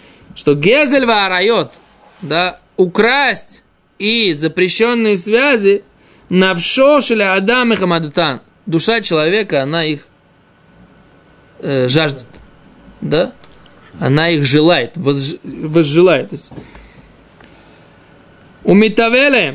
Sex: male